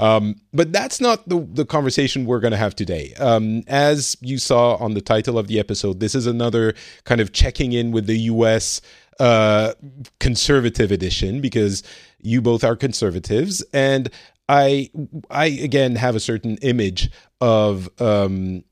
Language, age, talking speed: English, 40-59, 160 wpm